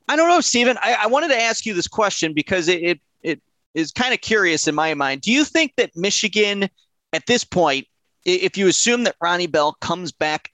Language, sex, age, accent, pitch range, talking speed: English, male, 30-49, American, 140-180 Hz, 220 wpm